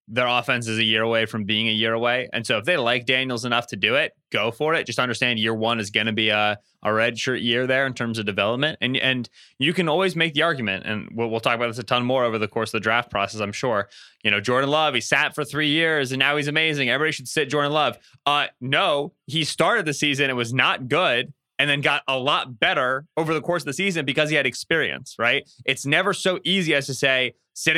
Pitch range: 115-145 Hz